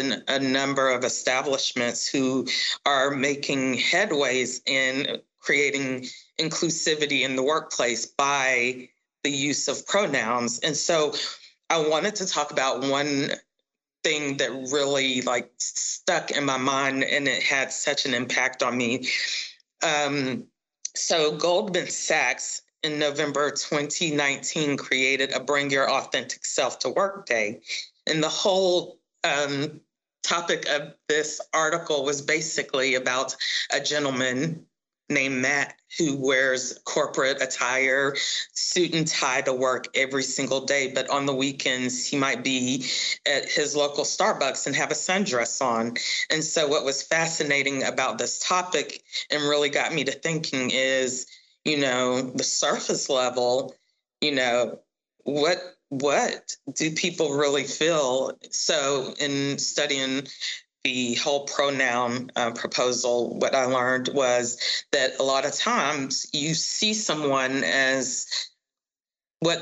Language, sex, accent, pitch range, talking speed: English, female, American, 130-150 Hz, 130 wpm